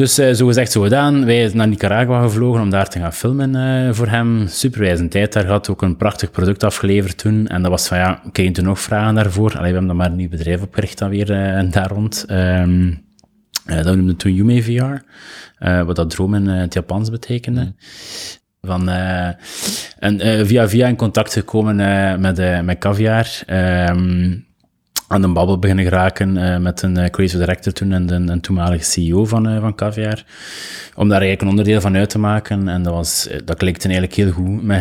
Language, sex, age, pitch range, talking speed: Dutch, male, 20-39, 90-110 Hz, 200 wpm